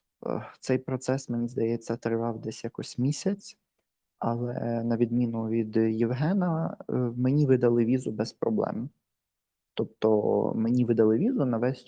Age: 20-39